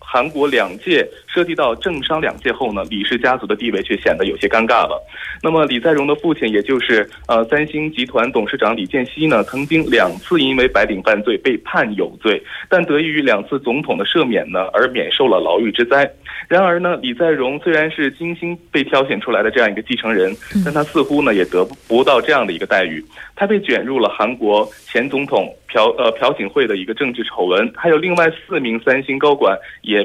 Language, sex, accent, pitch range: Korean, male, Chinese, 125-200 Hz